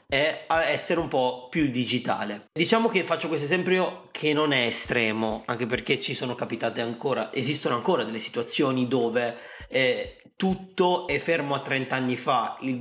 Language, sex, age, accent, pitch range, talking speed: Italian, male, 30-49, native, 125-185 Hz, 165 wpm